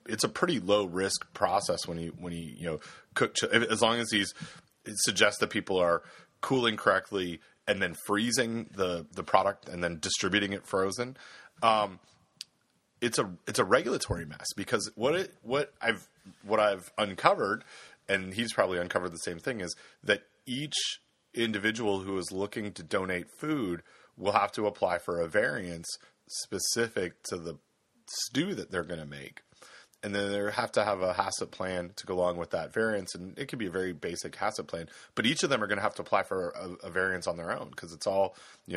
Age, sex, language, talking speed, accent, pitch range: 30-49, male, English, 200 wpm, American, 90-110 Hz